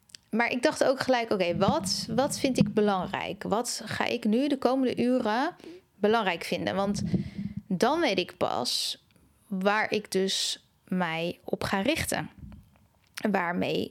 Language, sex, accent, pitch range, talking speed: Dutch, female, Dutch, 185-215 Hz, 140 wpm